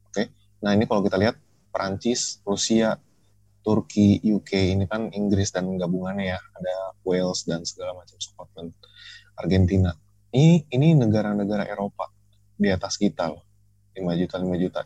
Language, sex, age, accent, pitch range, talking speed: Indonesian, male, 20-39, native, 95-105 Hz, 135 wpm